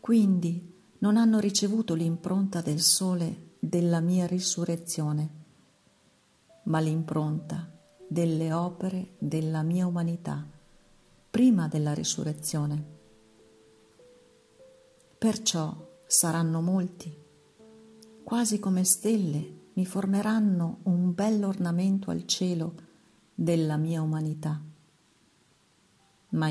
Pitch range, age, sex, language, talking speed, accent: 155-190 Hz, 50-69, female, Italian, 80 wpm, native